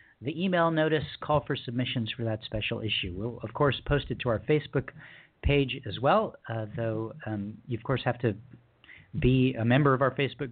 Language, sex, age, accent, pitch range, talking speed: English, male, 50-69, American, 110-140 Hz, 200 wpm